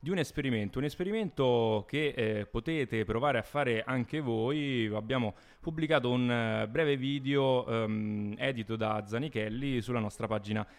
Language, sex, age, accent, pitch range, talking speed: Italian, male, 20-39, native, 105-130 Hz, 140 wpm